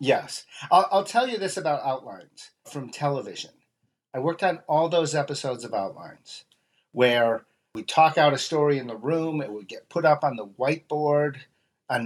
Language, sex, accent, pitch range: English, male, American, 120-150 Hz